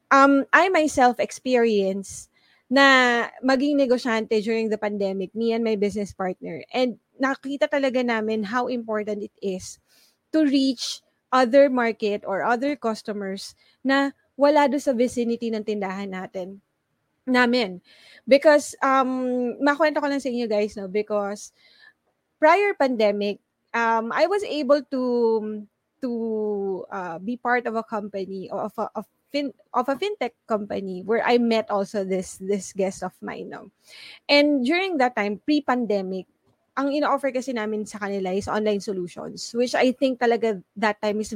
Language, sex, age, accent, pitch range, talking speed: English, female, 20-39, Filipino, 210-265 Hz, 145 wpm